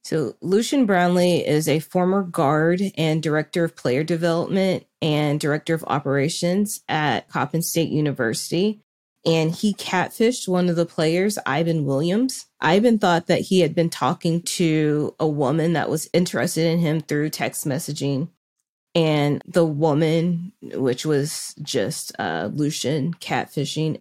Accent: American